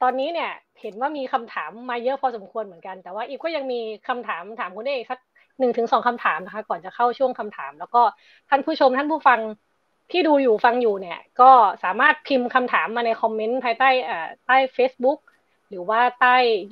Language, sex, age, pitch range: Thai, female, 20-39, 210-265 Hz